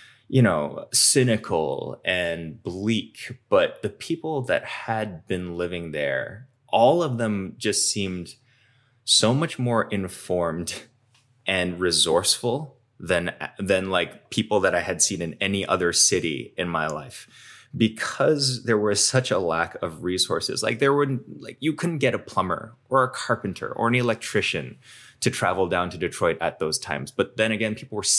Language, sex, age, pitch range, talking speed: English, male, 20-39, 95-125 Hz, 160 wpm